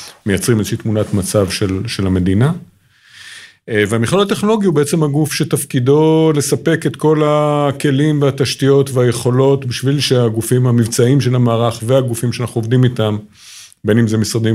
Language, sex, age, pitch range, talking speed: Hebrew, male, 50-69, 105-130 Hz, 130 wpm